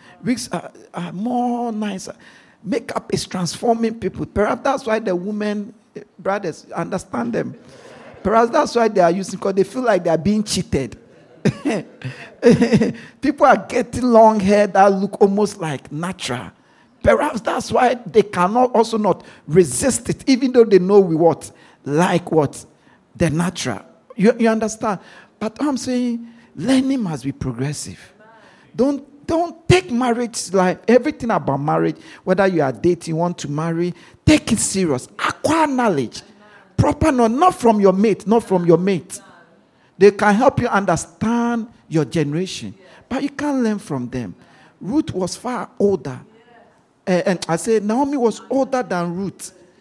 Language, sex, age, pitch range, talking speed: English, male, 50-69, 175-235 Hz, 155 wpm